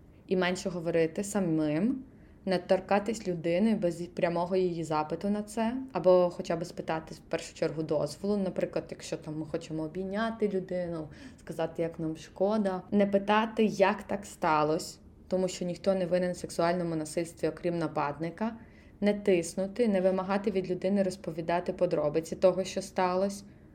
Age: 20-39